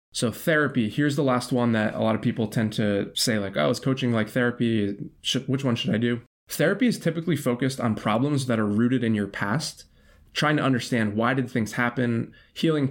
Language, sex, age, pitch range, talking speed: English, male, 20-39, 105-130 Hz, 210 wpm